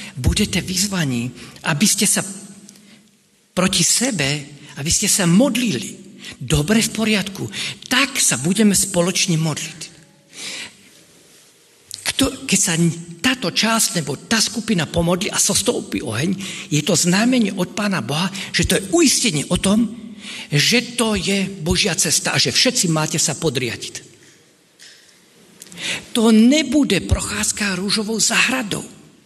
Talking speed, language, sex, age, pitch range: 120 wpm, Slovak, male, 50-69, 185-250 Hz